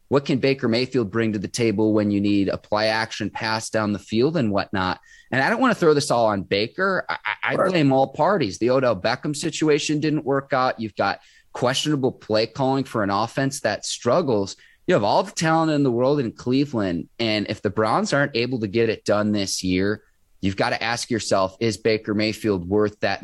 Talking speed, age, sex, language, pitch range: 215 wpm, 20-39, male, English, 100-130 Hz